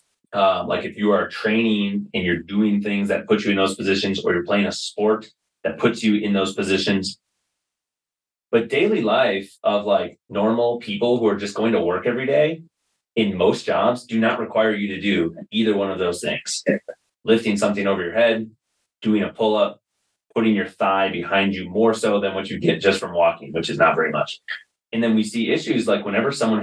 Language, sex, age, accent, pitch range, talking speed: English, male, 30-49, American, 100-115 Hz, 205 wpm